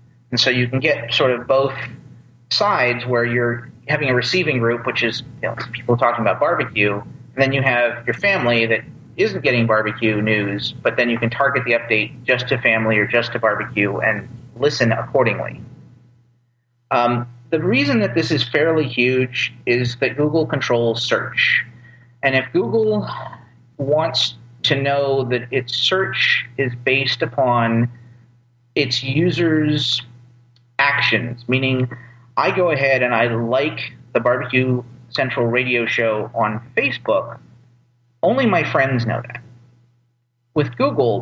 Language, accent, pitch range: English, American, 120-135 Hz